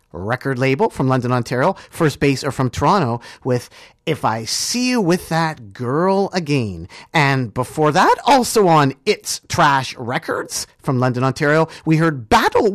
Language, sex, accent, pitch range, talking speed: English, male, American, 125-180 Hz, 155 wpm